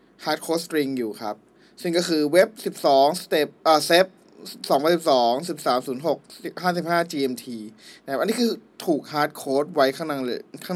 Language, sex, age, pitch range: Thai, male, 20-39, 145-190 Hz